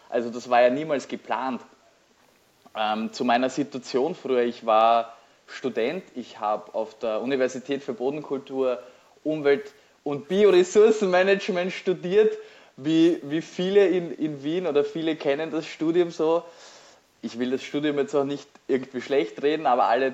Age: 20-39